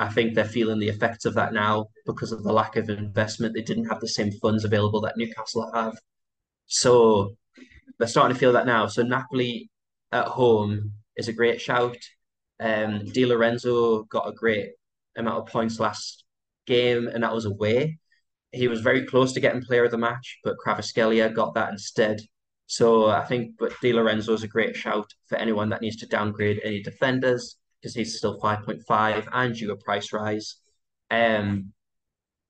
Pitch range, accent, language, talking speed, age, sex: 110-120 Hz, British, English, 185 wpm, 10-29, male